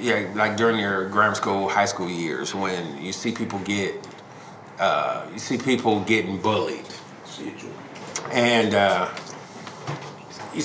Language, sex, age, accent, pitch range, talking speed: English, male, 30-49, American, 105-125 Hz, 130 wpm